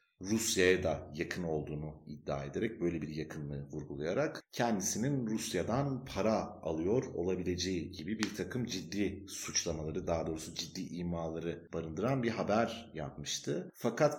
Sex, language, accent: male, Turkish, native